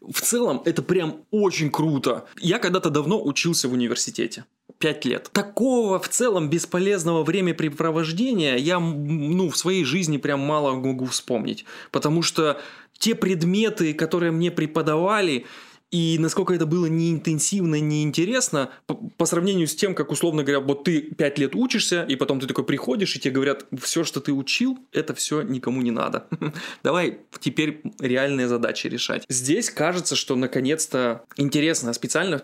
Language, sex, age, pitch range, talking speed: Russian, male, 20-39, 130-170 Hz, 150 wpm